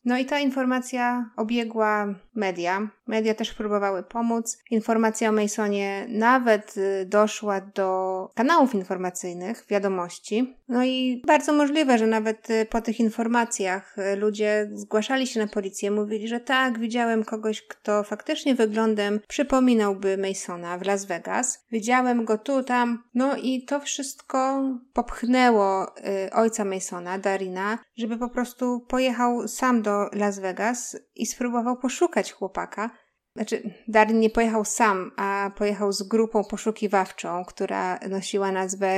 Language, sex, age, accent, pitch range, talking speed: Polish, female, 20-39, native, 205-240 Hz, 130 wpm